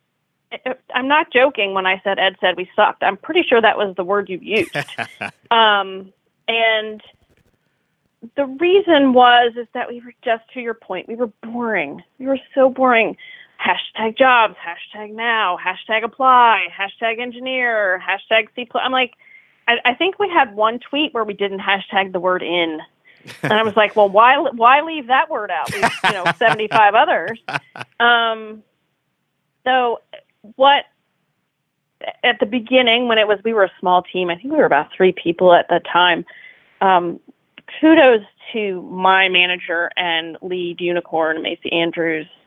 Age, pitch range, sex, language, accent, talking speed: 30-49, 190-255 Hz, female, English, American, 160 wpm